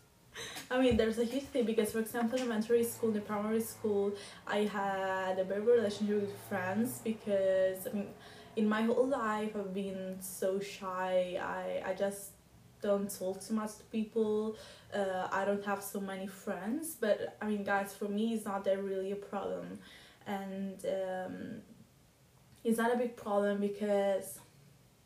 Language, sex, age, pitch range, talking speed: English, female, 10-29, 200-230 Hz, 170 wpm